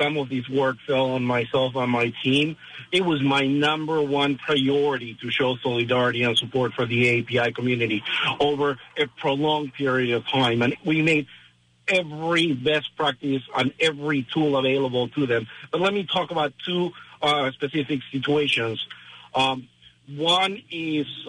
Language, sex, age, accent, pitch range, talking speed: English, male, 50-69, American, 130-155 Hz, 155 wpm